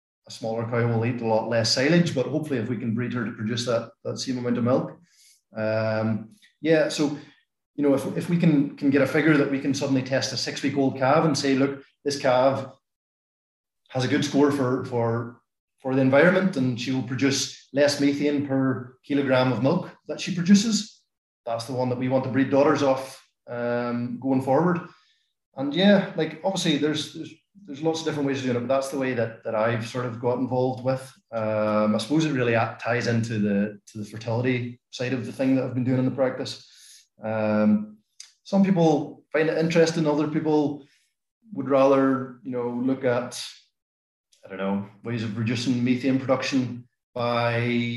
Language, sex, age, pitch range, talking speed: English, male, 30-49, 120-145 Hz, 195 wpm